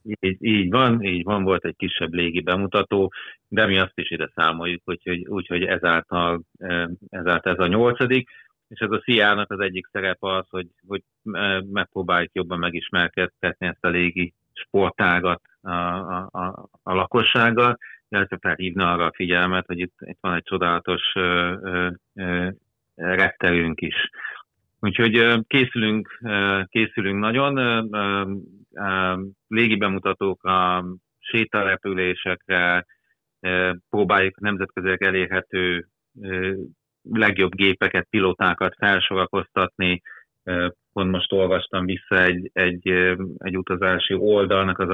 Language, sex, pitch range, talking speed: Hungarian, male, 90-100 Hz, 125 wpm